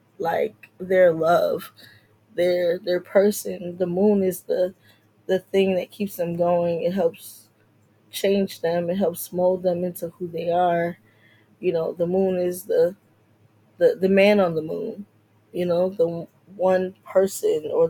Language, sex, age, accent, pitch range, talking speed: English, female, 10-29, American, 165-185 Hz, 155 wpm